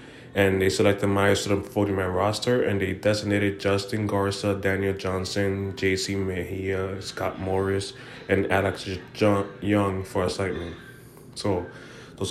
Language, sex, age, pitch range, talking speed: English, male, 20-39, 95-105 Hz, 125 wpm